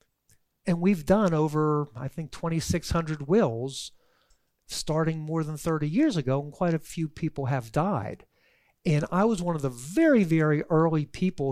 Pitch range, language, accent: 140-185 Hz, English, American